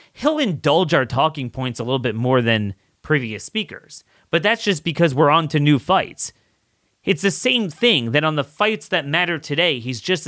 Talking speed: 200 wpm